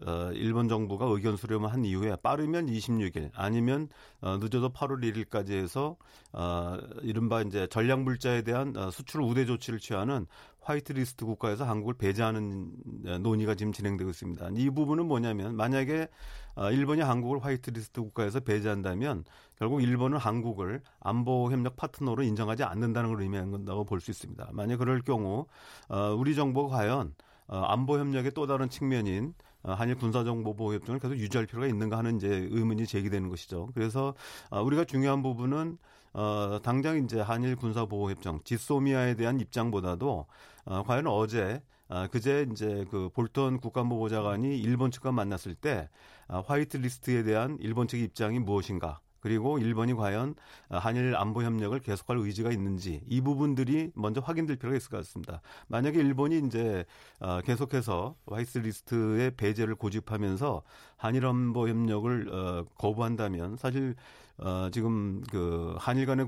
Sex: male